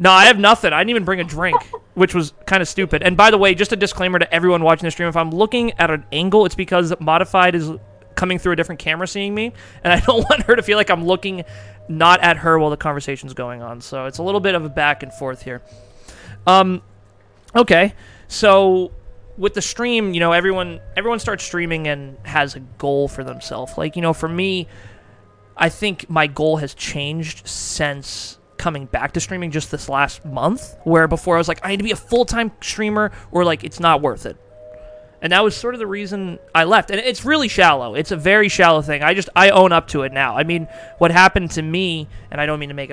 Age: 20-39